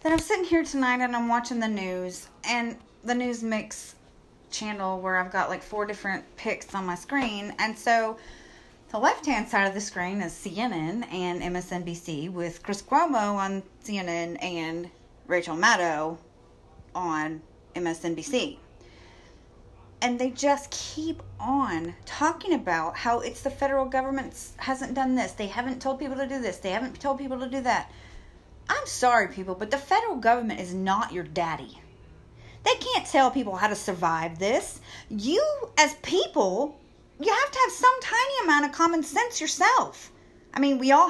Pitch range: 195-275 Hz